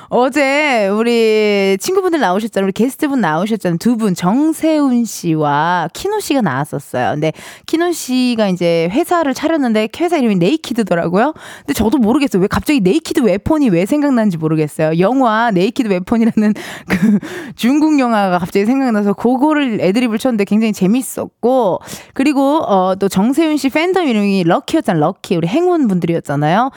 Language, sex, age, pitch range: Korean, female, 20-39, 185-290 Hz